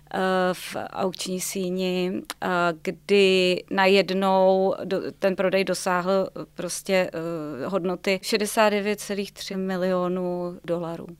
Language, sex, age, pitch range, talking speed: Czech, female, 30-49, 185-210 Hz, 70 wpm